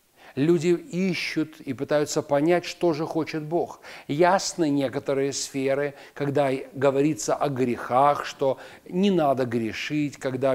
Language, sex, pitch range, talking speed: Russian, male, 140-175 Hz, 120 wpm